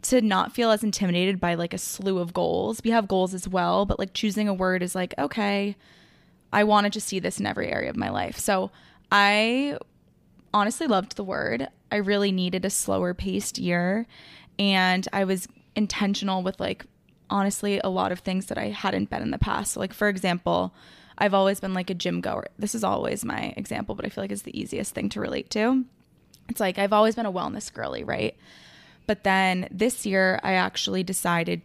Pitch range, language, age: 180-205 Hz, English, 20-39